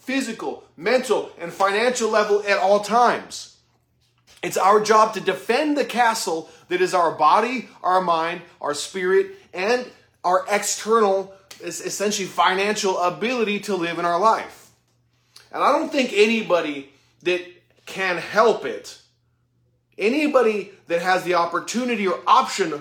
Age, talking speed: 30-49, 130 wpm